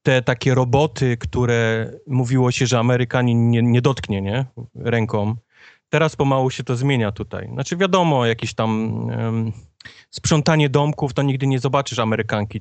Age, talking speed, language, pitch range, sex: 30-49, 150 wpm, Polish, 110-125 Hz, male